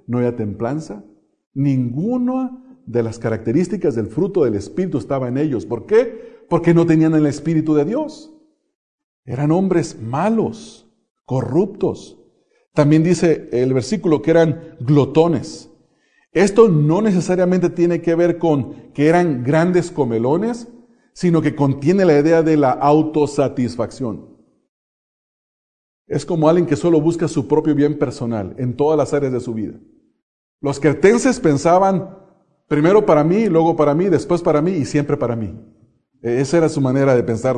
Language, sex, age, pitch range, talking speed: English, male, 40-59, 140-185 Hz, 145 wpm